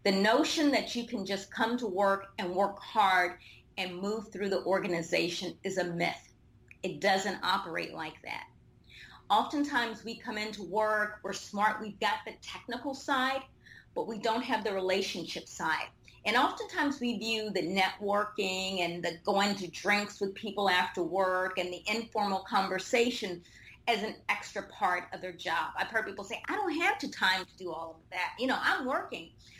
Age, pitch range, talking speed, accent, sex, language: 30-49, 180-225 Hz, 180 wpm, American, female, English